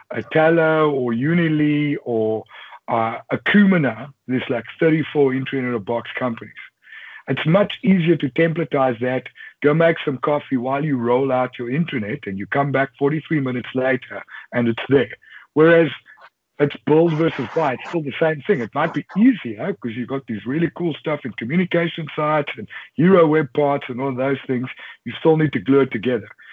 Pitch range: 125-160 Hz